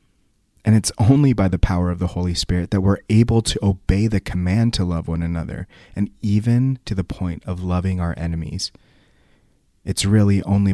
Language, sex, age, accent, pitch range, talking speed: English, male, 30-49, American, 90-105 Hz, 185 wpm